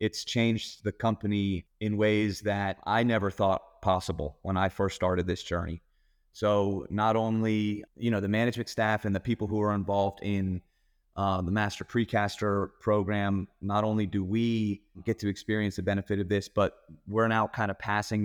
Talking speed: 180 wpm